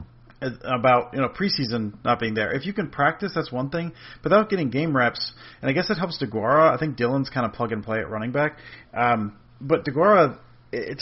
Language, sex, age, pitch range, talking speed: English, male, 30-49, 115-140 Hz, 205 wpm